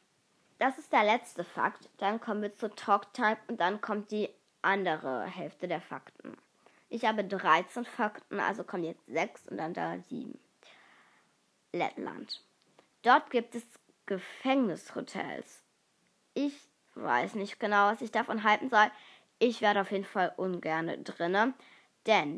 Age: 20-39